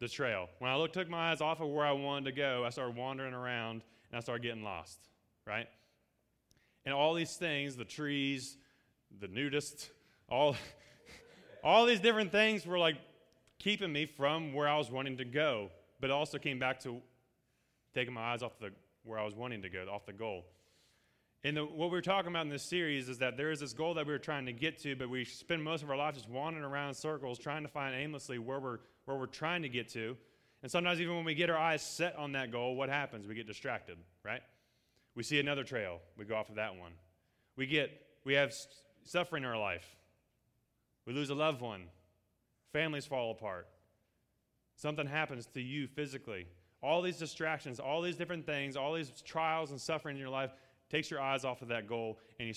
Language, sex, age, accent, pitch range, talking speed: English, male, 30-49, American, 115-150 Hz, 215 wpm